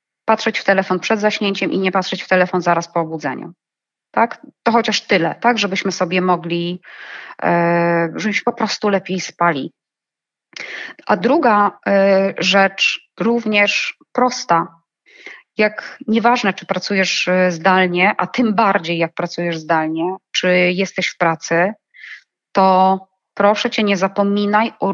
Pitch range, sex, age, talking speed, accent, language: 180-215 Hz, female, 20-39, 125 wpm, native, Polish